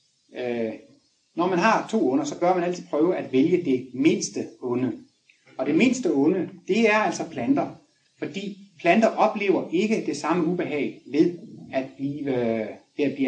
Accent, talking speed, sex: native, 155 wpm, male